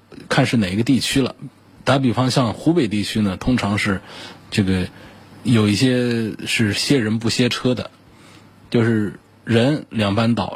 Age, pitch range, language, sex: 20-39, 95-120 Hz, Chinese, male